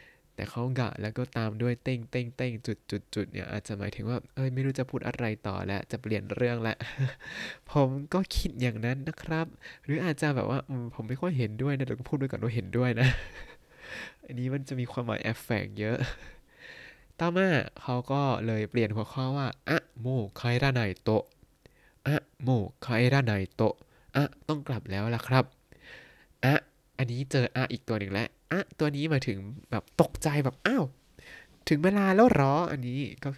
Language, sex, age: Thai, male, 20-39